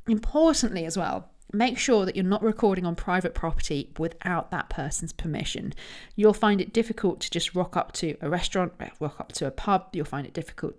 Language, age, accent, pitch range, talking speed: English, 40-59, British, 150-215 Hz, 200 wpm